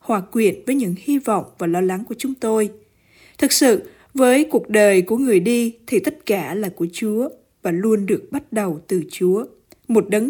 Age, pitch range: 20-39, 195-255 Hz